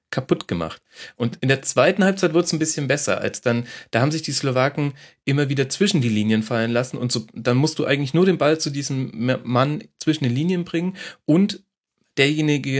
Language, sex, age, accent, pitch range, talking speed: German, male, 40-59, German, 120-150 Hz, 205 wpm